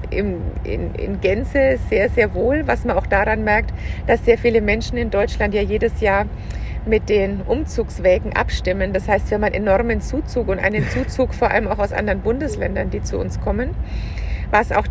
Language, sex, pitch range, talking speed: German, female, 195-230 Hz, 185 wpm